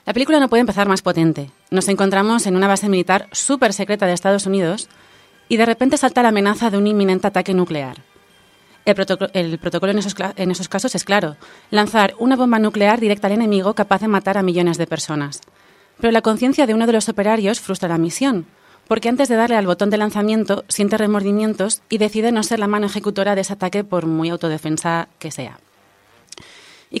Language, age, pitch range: Spanish, 30-49, 180-225 Hz